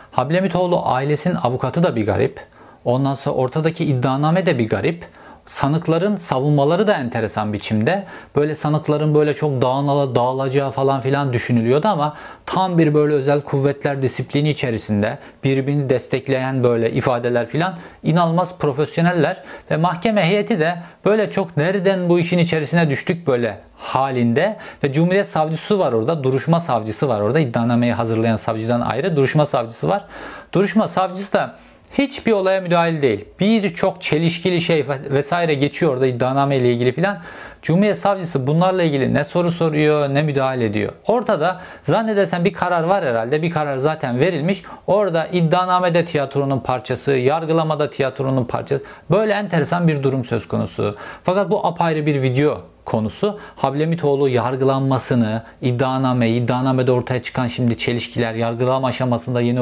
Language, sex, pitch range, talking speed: Turkish, male, 130-175 Hz, 140 wpm